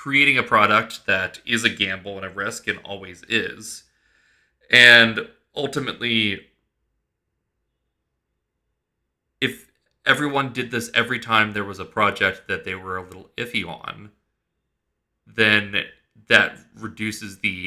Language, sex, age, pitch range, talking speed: English, male, 30-49, 95-115 Hz, 120 wpm